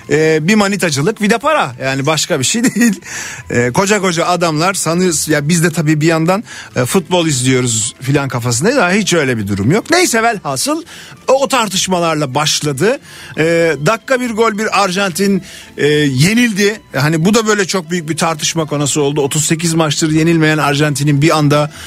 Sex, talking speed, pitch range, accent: male, 175 wpm, 150-195 Hz, native